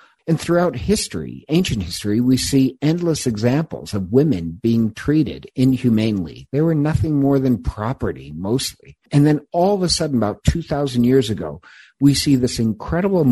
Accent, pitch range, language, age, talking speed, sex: American, 105-145 Hz, English, 50-69, 160 wpm, male